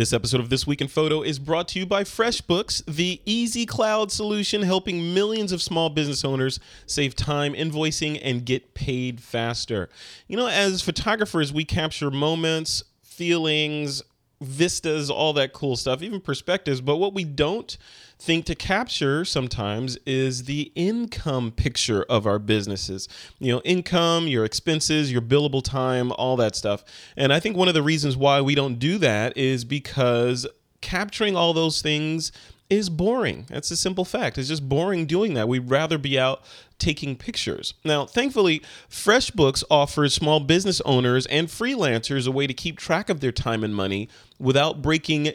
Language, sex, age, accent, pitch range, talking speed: English, male, 30-49, American, 130-170 Hz, 170 wpm